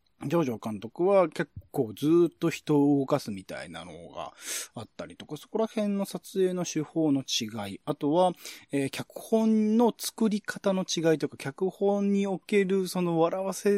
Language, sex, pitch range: Japanese, male, 120-190 Hz